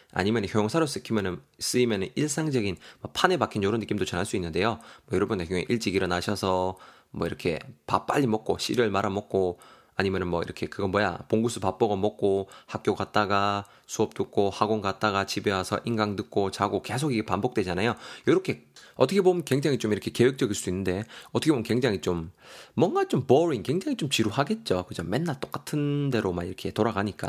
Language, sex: Korean, male